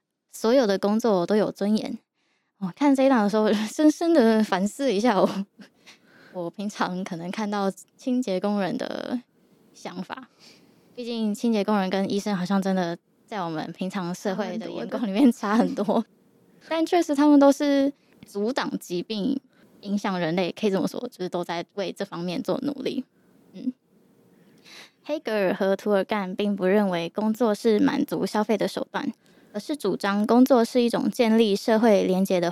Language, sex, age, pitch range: Chinese, female, 10-29, 195-245 Hz